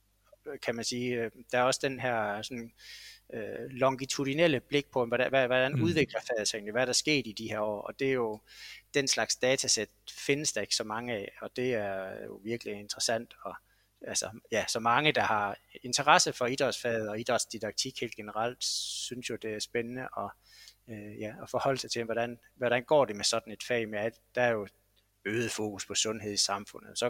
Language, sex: Danish, male